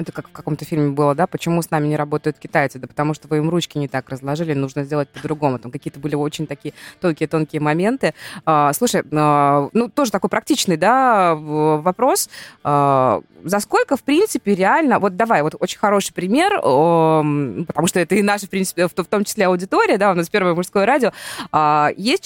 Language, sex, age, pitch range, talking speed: Russian, female, 20-39, 155-215 Hz, 185 wpm